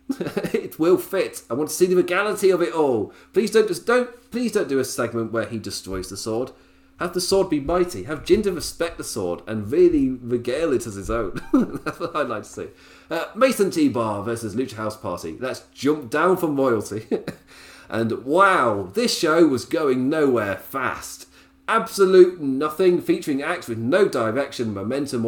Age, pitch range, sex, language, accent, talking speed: 30-49, 105-175 Hz, male, English, British, 185 wpm